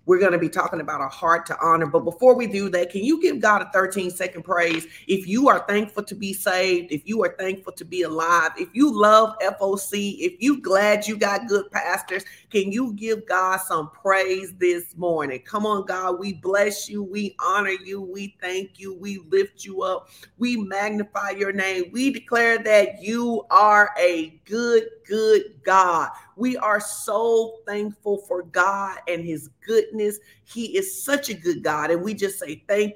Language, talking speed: English, 190 wpm